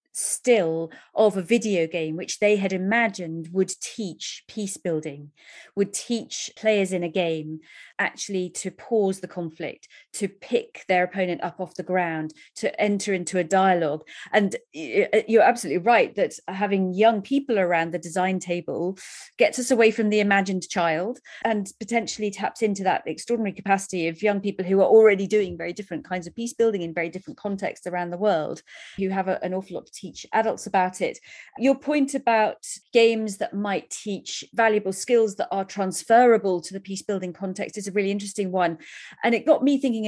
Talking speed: 180 wpm